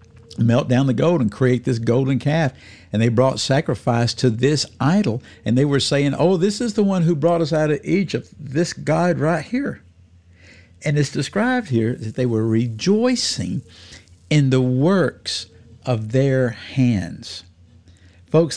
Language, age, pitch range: English, 60-79, 110-155 Hz